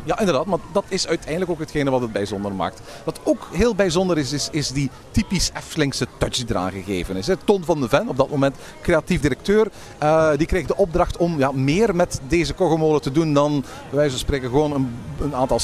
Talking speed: 210 wpm